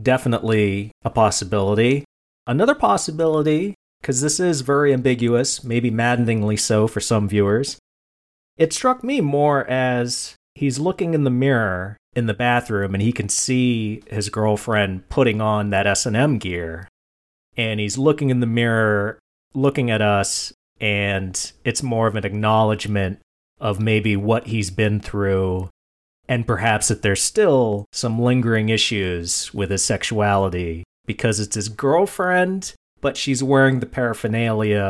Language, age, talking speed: English, 30-49, 140 wpm